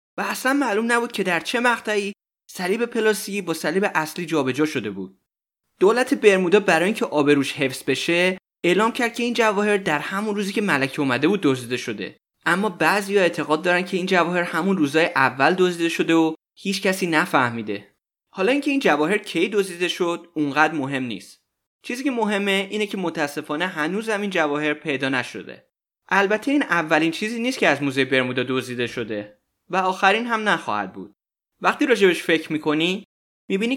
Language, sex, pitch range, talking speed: Persian, male, 140-205 Hz, 170 wpm